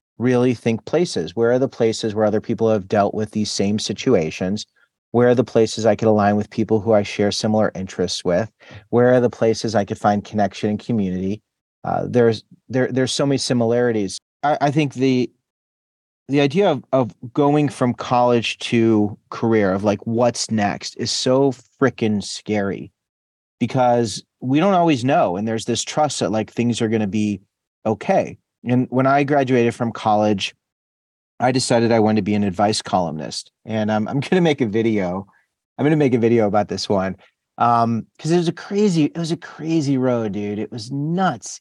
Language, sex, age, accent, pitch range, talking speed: English, male, 40-59, American, 105-130 Hz, 190 wpm